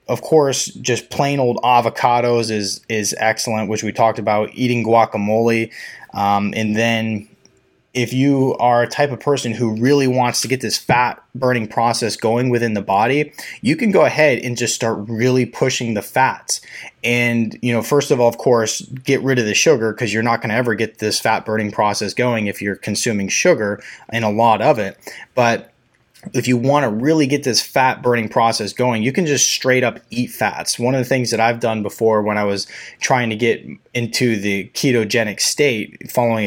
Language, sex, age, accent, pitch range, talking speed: English, male, 20-39, American, 110-125 Hz, 200 wpm